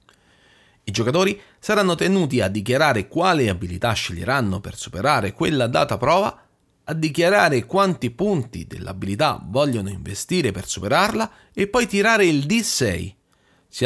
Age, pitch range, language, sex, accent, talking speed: 40-59, 115-175 Hz, Italian, male, native, 125 wpm